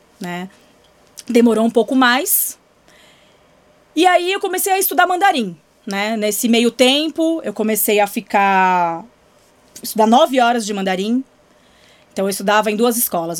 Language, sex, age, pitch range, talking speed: Portuguese, female, 20-39, 200-255 Hz, 140 wpm